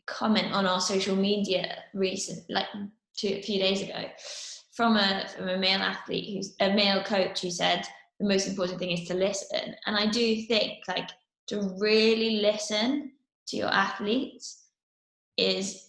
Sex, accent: female, British